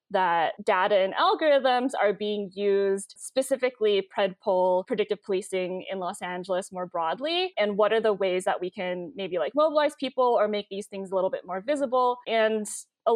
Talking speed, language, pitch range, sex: 180 wpm, English, 185-215 Hz, female